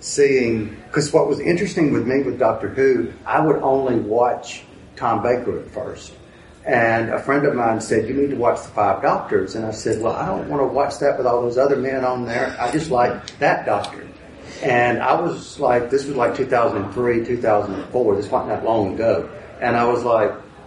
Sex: male